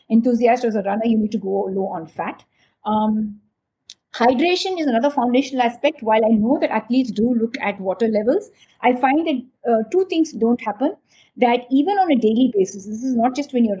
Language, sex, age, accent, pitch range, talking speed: English, female, 50-69, Indian, 220-275 Hz, 205 wpm